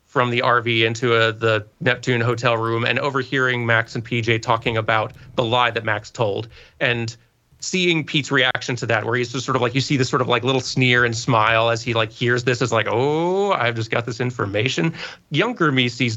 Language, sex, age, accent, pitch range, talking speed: English, male, 30-49, American, 115-135 Hz, 215 wpm